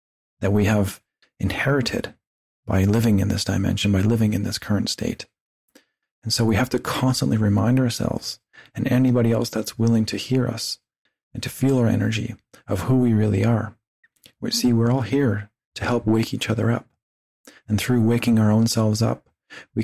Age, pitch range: 40-59, 105-120 Hz